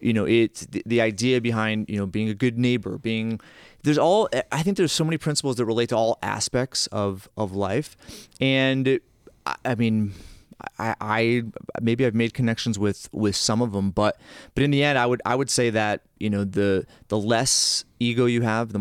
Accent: American